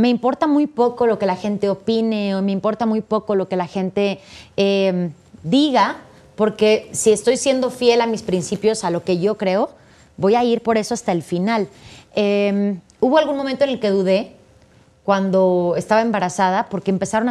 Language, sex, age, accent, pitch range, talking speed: Spanish, female, 30-49, Mexican, 195-235 Hz, 185 wpm